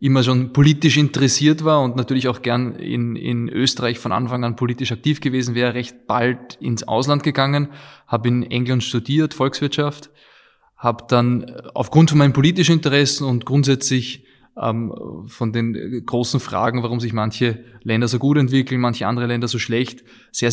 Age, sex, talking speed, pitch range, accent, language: 20-39, male, 165 wpm, 120-140 Hz, German, German